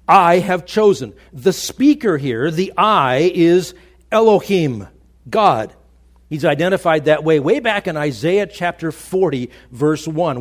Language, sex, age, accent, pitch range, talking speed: English, male, 50-69, American, 130-180 Hz, 135 wpm